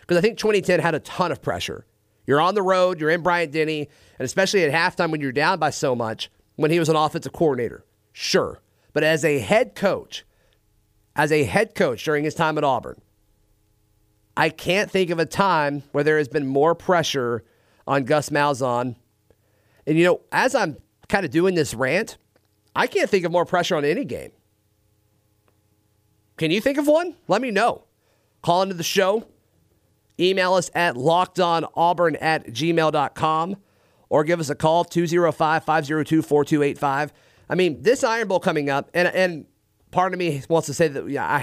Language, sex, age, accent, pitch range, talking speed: English, male, 40-59, American, 110-170 Hz, 180 wpm